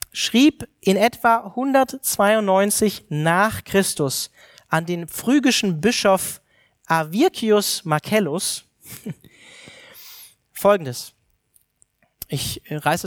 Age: 40-59